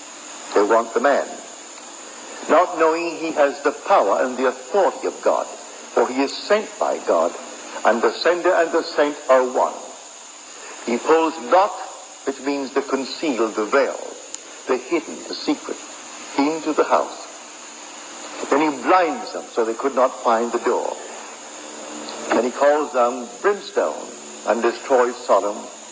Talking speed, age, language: 150 wpm, 60-79, English